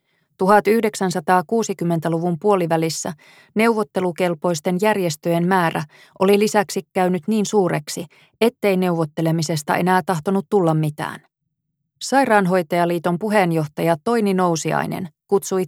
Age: 20-39